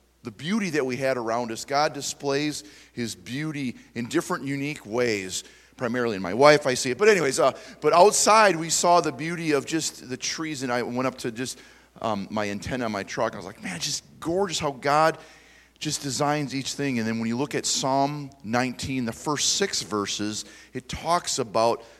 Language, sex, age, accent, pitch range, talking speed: English, male, 30-49, American, 110-140 Hz, 200 wpm